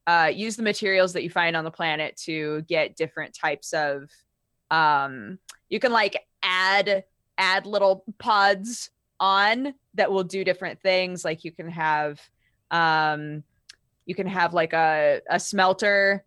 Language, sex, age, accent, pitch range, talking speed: English, female, 20-39, American, 160-220 Hz, 150 wpm